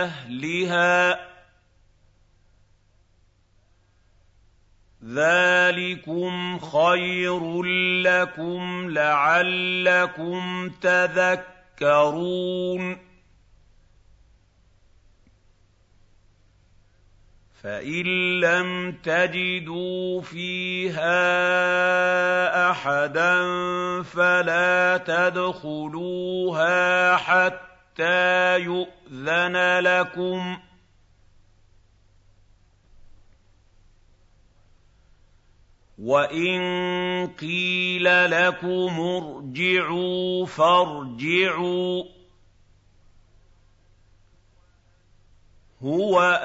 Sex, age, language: male, 50-69, Arabic